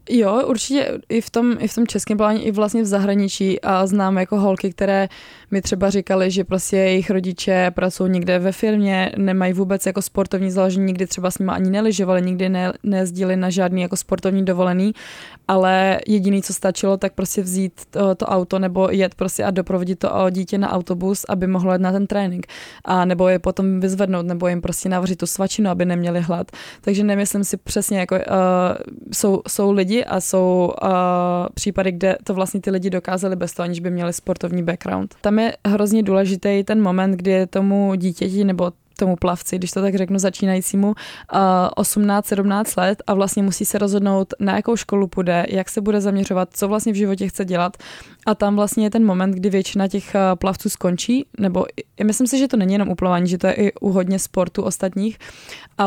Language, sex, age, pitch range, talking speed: Czech, female, 20-39, 185-205 Hz, 200 wpm